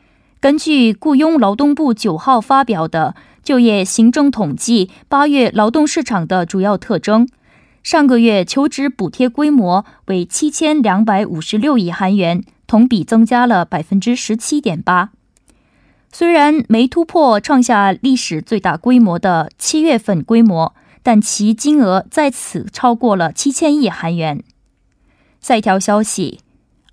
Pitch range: 195-275 Hz